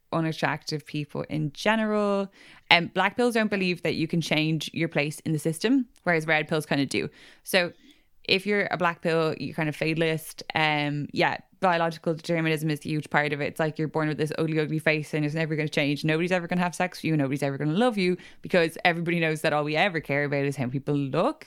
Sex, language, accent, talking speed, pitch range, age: female, English, Irish, 245 wpm, 150-175 Hz, 10-29